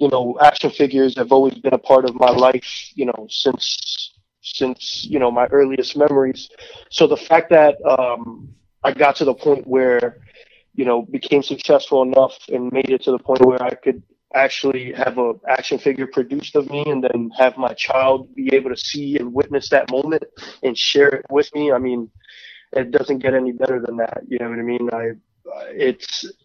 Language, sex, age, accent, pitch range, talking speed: English, male, 20-39, American, 125-140 Hz, 200 wpm